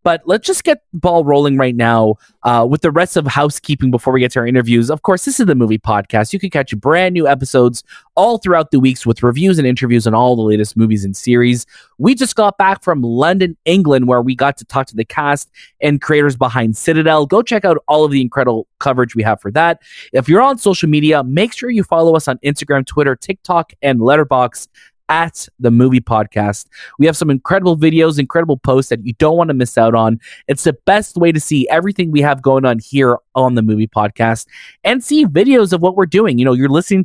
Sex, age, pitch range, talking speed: male, 20-39, 120-170 Hz, 230 wpm